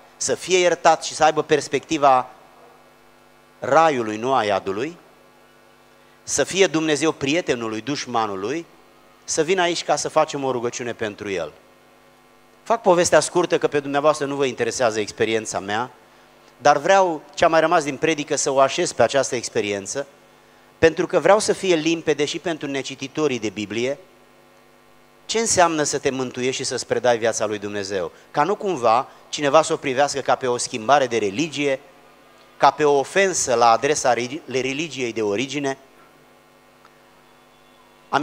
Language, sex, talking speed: Romanian, male, 150 wpm